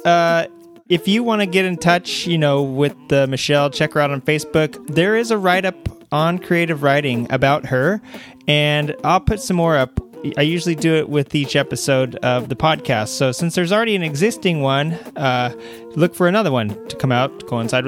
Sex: male